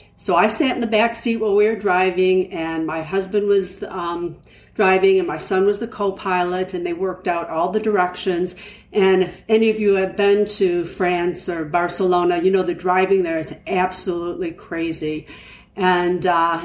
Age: 50-69